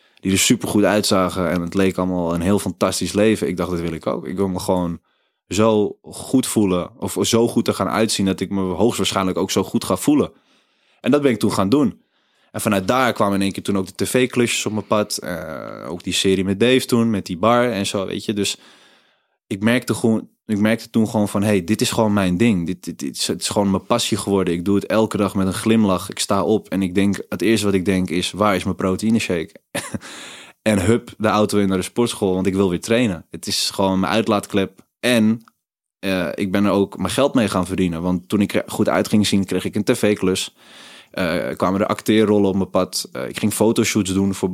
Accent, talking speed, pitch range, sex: Dutch, 240 wpm, 95-110 Hz, male